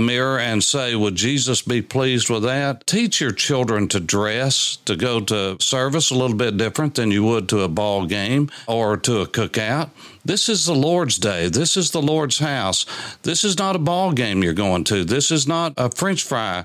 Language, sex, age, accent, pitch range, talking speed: English, male, 60-79, American, 115-160 Hz, 210 wpm